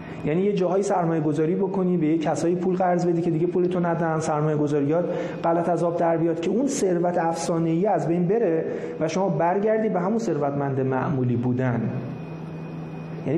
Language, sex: Persian, male